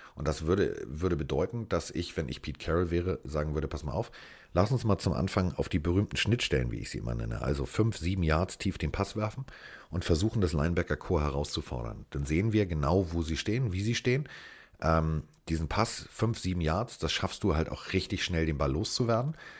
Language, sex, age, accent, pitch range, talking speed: German, male, 40-59, German, 80-100 Hz, 215 wpm